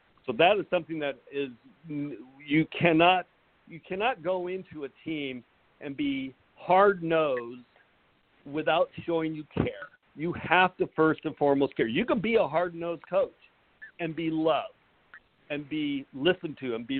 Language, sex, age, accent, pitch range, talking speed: English, male, 50-69, American, 130-170 Hz, 155 wpm